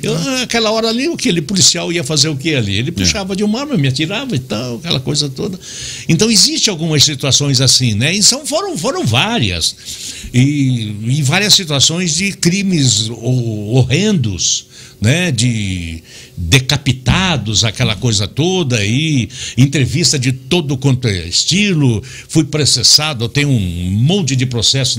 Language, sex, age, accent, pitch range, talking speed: Portuguese, male, 60-79, Brazilian, 115-175 Hz, 150 wpm